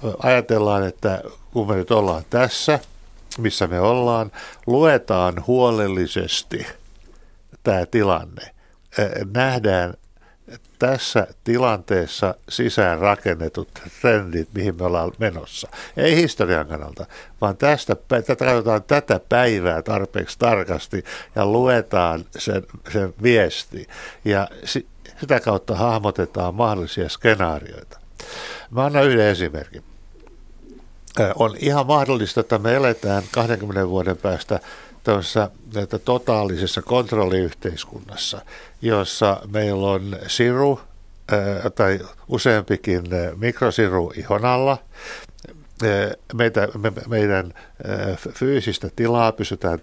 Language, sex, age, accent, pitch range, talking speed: Finnish, male, 60-79, native, 90-115 Hz, 90 wpm